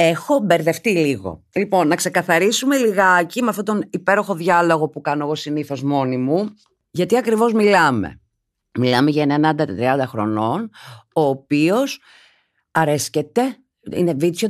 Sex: female